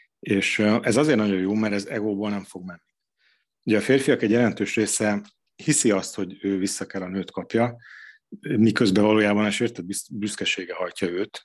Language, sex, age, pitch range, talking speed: Hungarian, male, 30-49, 95-110 Hz, 170 wpm